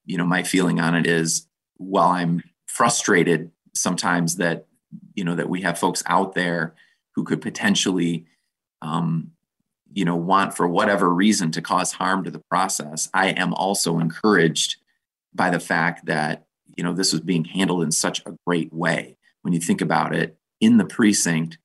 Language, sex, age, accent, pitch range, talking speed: English, male, 30-49, American, 85-95 Hz, 175 wpm